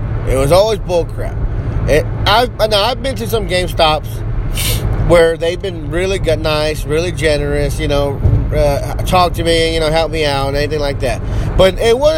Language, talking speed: English, 180 wpm